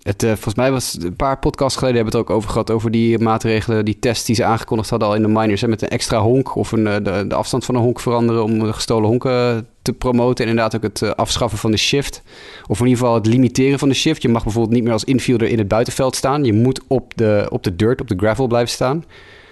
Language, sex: Dutch, male